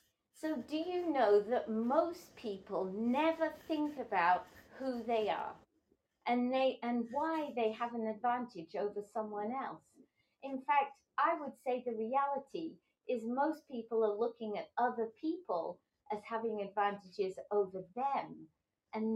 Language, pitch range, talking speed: English, 210-280 Hz, 140 wpm